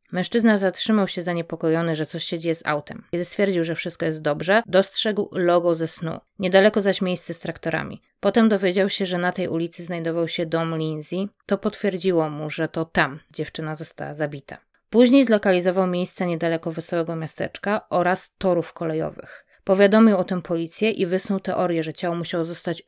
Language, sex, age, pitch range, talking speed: Polish, female, 20-39, 165-195 Hz, 170 wpm